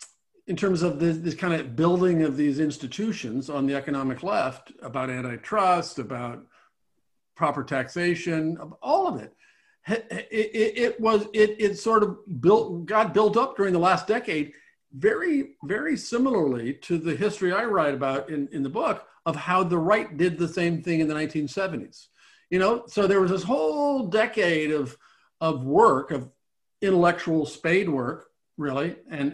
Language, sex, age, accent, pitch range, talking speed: English, male, 50-69, American, 160-215 Hz, 165 wpm